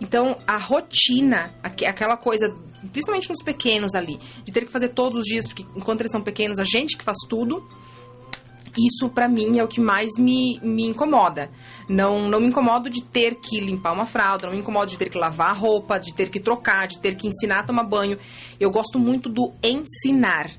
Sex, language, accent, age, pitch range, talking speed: female, Portuguese, Brazilian, 30-49, 185-240 Hz, 205 wpm